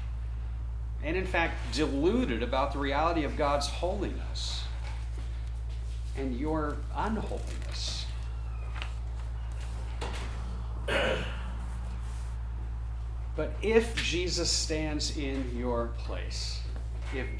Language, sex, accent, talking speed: English, male, American, 70 wpm